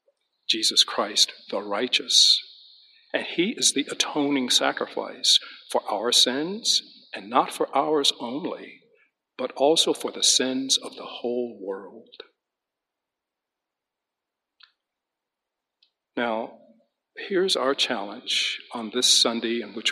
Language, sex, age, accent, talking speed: English, male, 50-69, American, 110 wpm